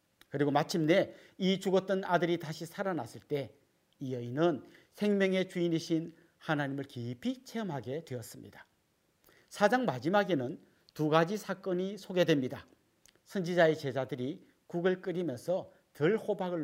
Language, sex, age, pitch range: Korean, male, 40-59, 135-185 Hz